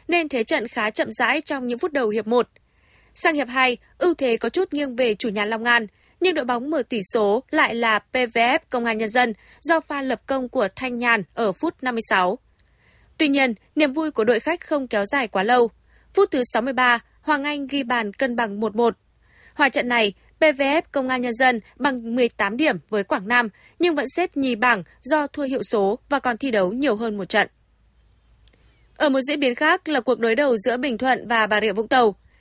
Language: Vietnamese